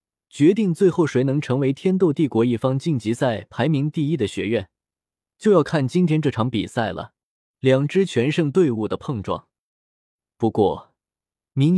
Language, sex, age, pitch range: Chinese, male, 20-39, 105-155 Hz